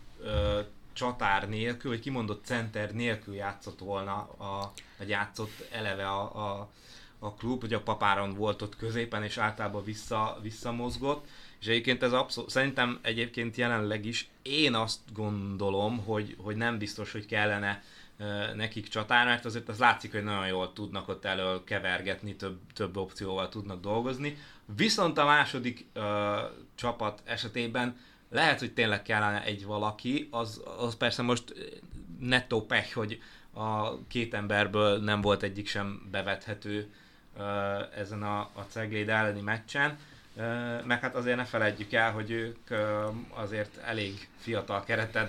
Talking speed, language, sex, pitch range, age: 140 wpm, Hungarian, male, 105-115 Hz, 20-39